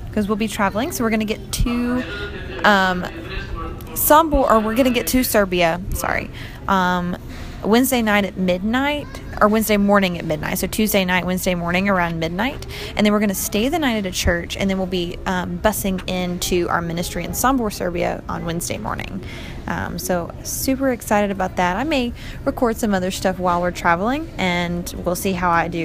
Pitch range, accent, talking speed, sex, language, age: 180-215 Hz, American, 195 wpm, female, English, 20-39